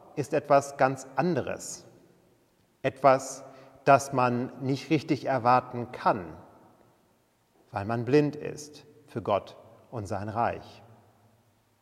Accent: German